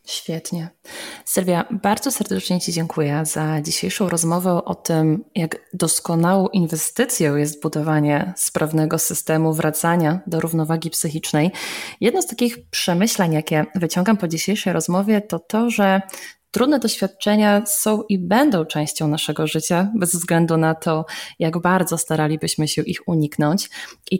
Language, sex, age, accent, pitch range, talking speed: Polish, female, 20-39, native, 160-210 Hz, 130 wpm